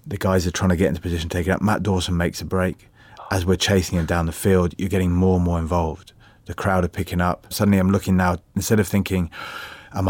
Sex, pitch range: male, 90-100 Hz